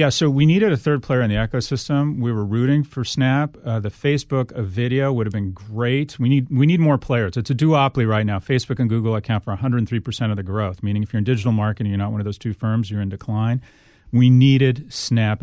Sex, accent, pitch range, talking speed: male, American, 110-135 Hz, 245 wpm